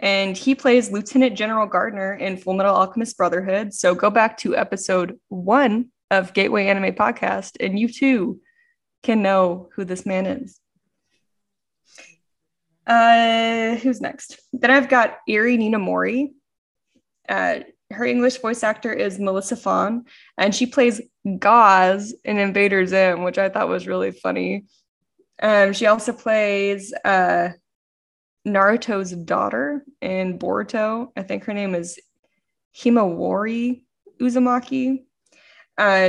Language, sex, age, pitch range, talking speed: English, female, 20-39, 195-240 Hz, 125 wpm